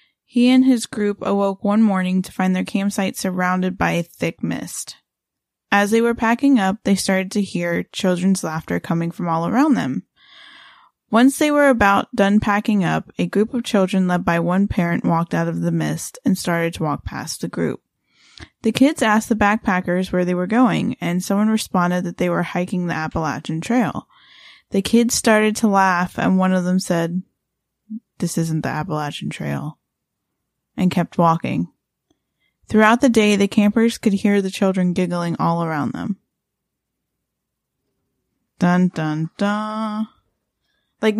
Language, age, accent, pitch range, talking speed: English, 10-29, American, 180-230 Hz, 165 wpm